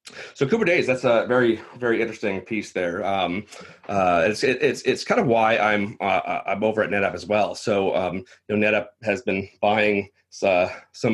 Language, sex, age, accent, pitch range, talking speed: English, male, 30-49, American, 100-125 Hz, 195 wpm